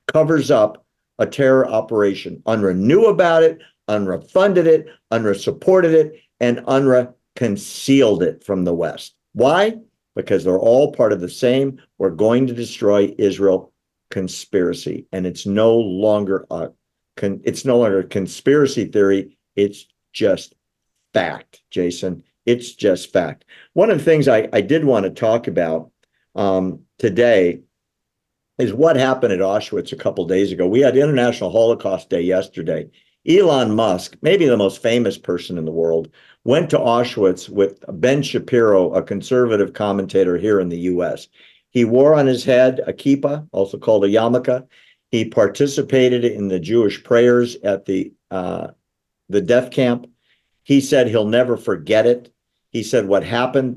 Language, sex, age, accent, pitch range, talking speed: English, male, 50-69, American, 95-130 Hz, 155 wpm